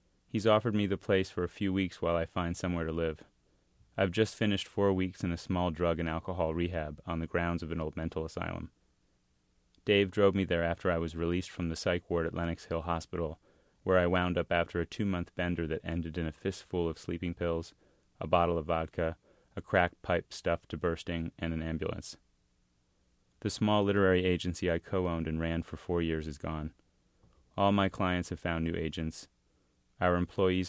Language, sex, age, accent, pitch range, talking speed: English, male, 30-49, American, 80-90 Hz, 200 wpm